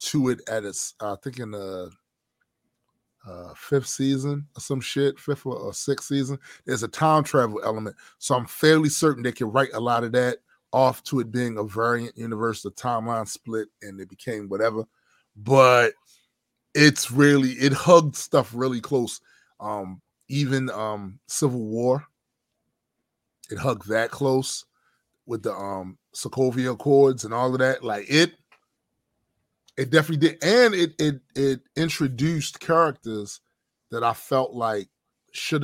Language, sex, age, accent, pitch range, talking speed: English, male, 20-39, American, 110-140 Hz, 155 wpm